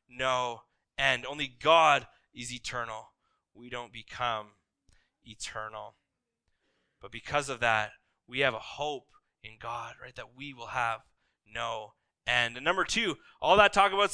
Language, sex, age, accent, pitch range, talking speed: English, male, 20-39, American, 165-215 Hz, 145 wpm